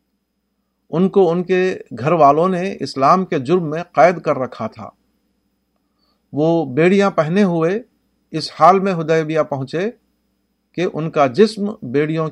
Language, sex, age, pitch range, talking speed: Urdu, male, 50-69, 140-180 Hz, 140 wpm